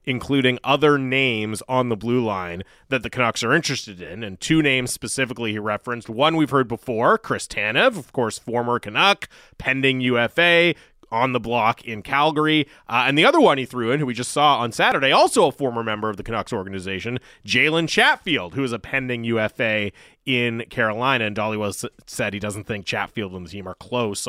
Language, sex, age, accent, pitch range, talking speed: English, male, 30-49, American, 110-135 Hz, 200 wpm